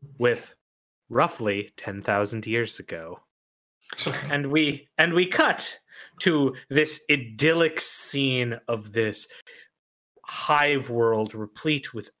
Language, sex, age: English, male, 30-49